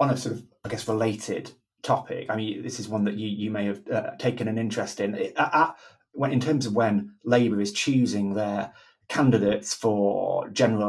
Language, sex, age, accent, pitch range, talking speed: English, male, 20-39, British, 100-115 Hz, 205 wpm